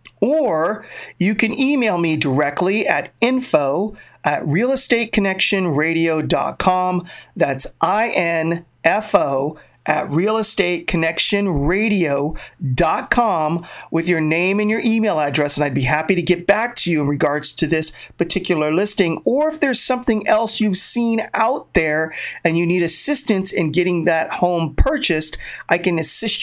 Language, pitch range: English, 150-190 Hz